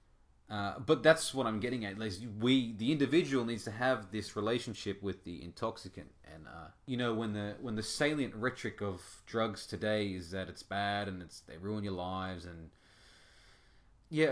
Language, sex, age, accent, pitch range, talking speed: English, male, 20-39, Australian, 95-130 Hz, 185 wpm